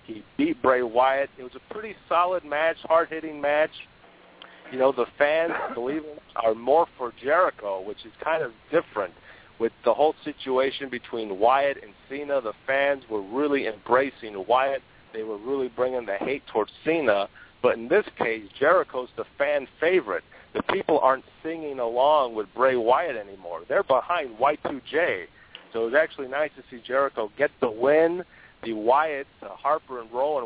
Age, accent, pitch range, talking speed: 50-69, American, 115-140 Hz, 165 wpm